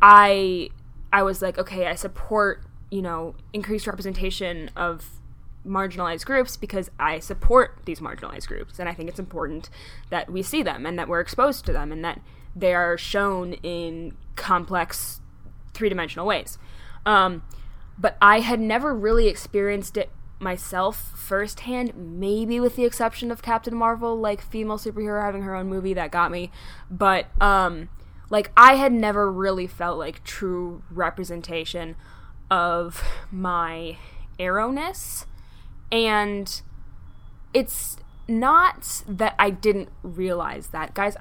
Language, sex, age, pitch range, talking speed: English, female, 10-29, 175-230 Hz, 135 wpm